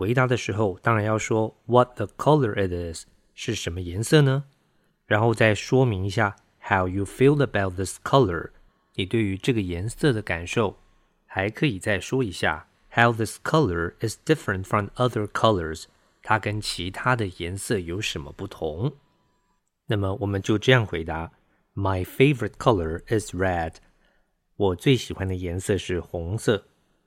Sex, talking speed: male, 70 wpm